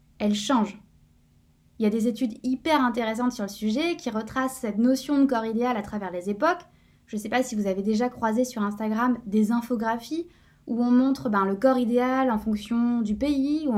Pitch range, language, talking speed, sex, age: 215-275 Hz, French, 210 wpm, female, 20-39